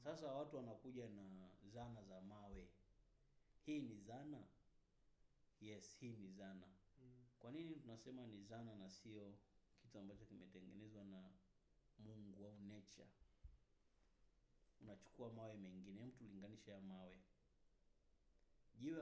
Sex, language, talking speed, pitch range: male, English, 115 wpm, 95-120 Hz